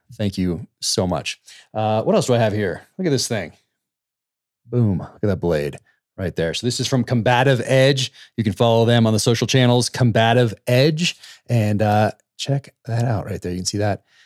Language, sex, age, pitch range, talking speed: English, male, 30-49, 90-125 Hz, 205 wpm